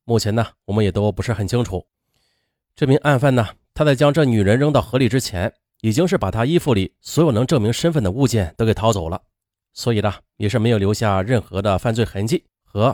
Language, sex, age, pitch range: Chinese, male, 30-49, 110-165 Hz